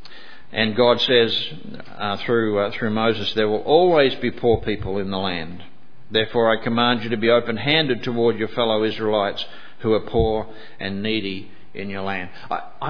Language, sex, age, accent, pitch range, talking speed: English, male, 50-69, Australian, 110-140 Hz, 170 wpm